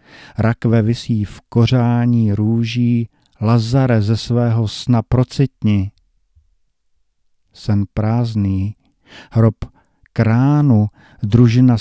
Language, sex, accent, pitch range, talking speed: Czech, male, native, 100-120 Hz, 75 wpm